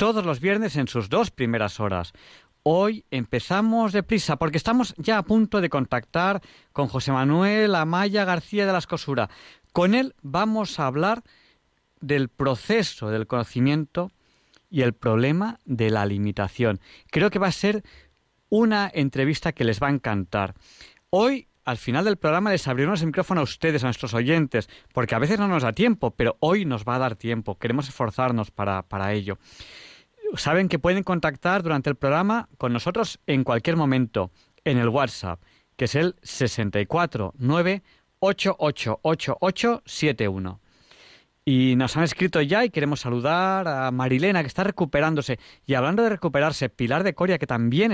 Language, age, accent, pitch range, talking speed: Spanish, 40-59, Spanish, 120-190 Hz, 160 wpm